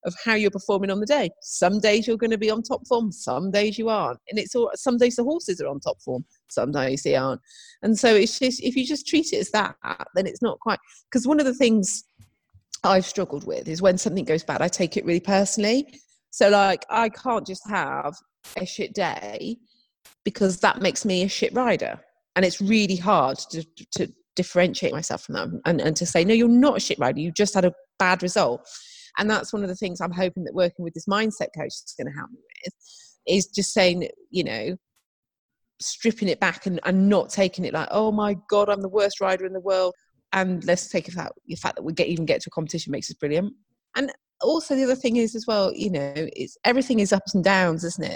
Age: 30-49